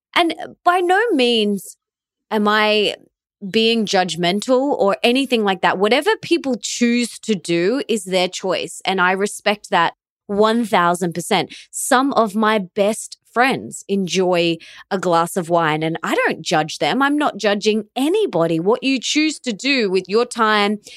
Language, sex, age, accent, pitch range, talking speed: English, female, 20-39, Australian, 175-235 Hz, 150 wpm